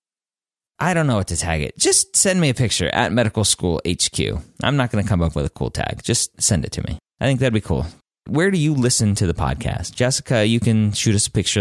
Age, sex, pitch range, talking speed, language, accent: 30-49, male, 85-115 Hz, 260 wpm, English, American